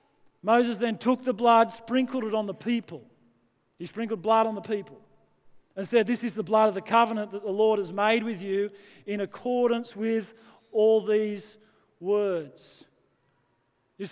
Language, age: English, 40-59